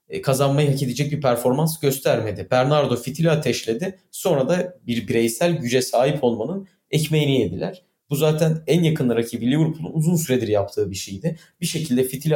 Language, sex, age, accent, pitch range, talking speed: Turkish, male, 40-59, native, 125-160 Hz, 155 wpm